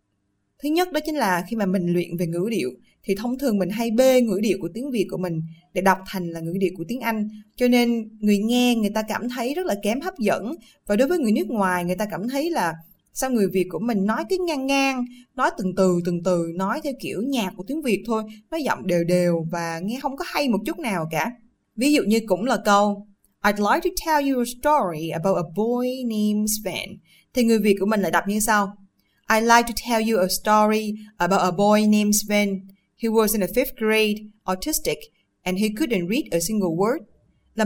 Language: Vietnamese